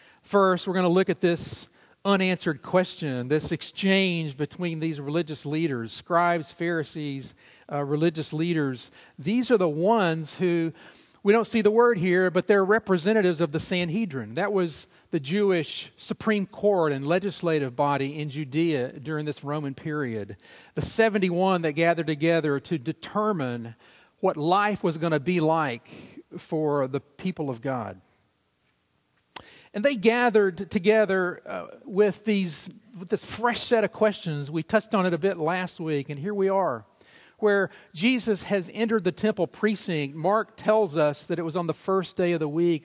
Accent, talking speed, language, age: American, 160 wpm, English, 50-69